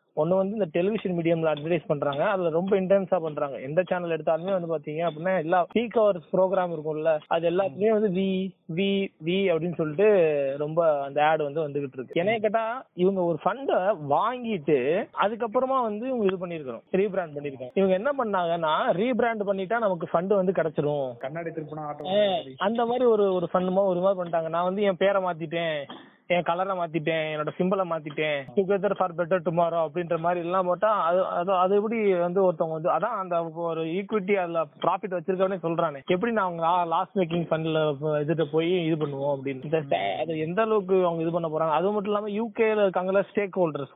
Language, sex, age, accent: Tamil, male, 20-39, native